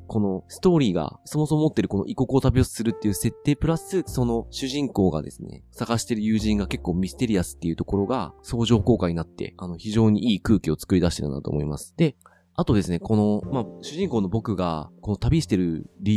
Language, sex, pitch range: Japanese, male, 90-125 Hz